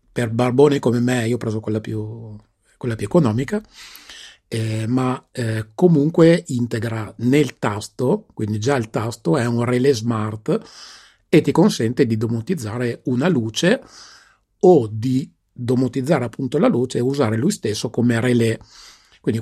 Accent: native